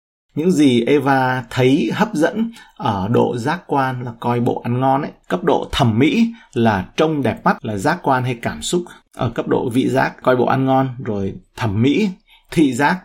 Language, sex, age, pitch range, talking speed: Vietnamese, male, 30-49, 110-145 Hz, 200 wpm